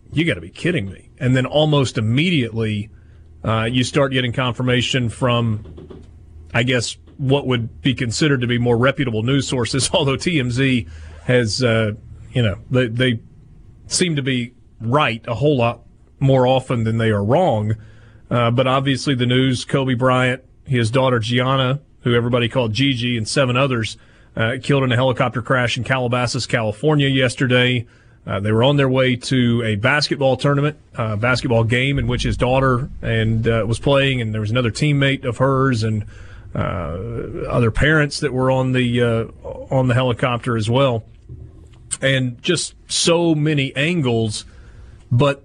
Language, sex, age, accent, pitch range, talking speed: English, male, 40-59, American, 115-135 Hz, 165 wpm